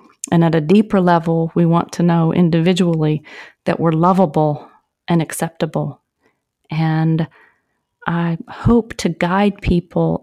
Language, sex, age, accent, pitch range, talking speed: English, female, 40-59, American, 165-185 Hz, 125 wpm